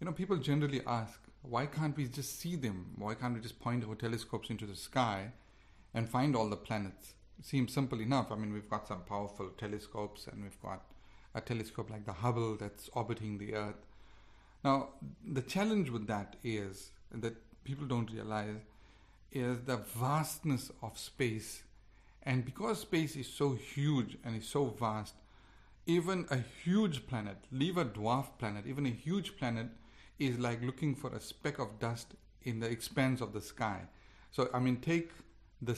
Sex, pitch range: male, 105-130 Hz